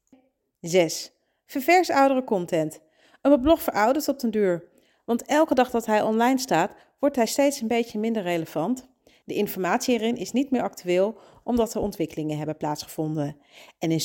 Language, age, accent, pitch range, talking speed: Dutch, 40-59, Dutch, 170-235 Hz, 160 wpm